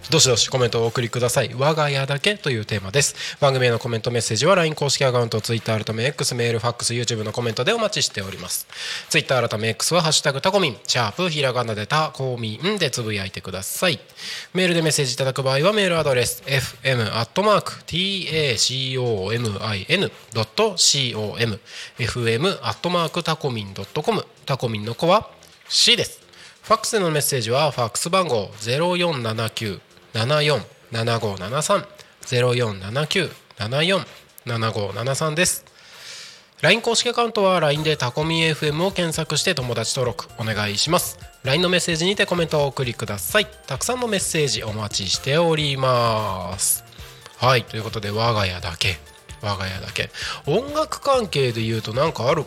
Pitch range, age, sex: 110-160 Hz, 20-39, male